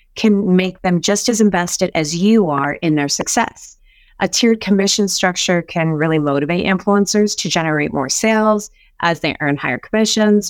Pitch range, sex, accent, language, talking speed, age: 155-205 Hz, female, American, English, 165 wpm, 30-49